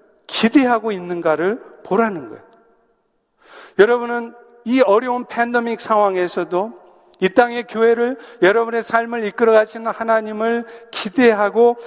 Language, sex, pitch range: Korean, male, 185-235 Hz